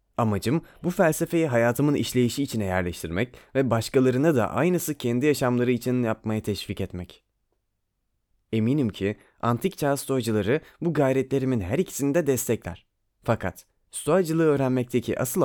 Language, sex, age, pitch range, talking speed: Turkish, male, 30-49, 110-150 Hz, 125 wpm